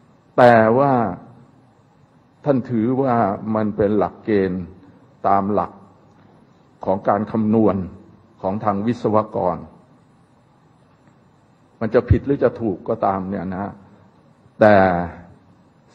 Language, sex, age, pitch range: Thai, male, 60-79, 105-140 Hz